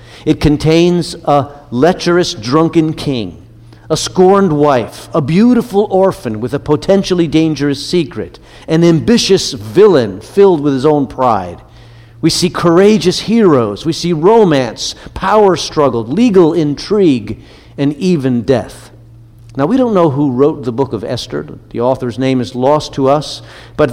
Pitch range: 125-165 Hz